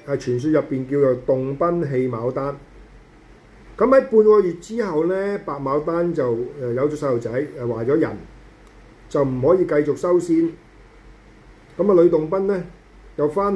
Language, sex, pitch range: Chinese, male, 135-180 Hz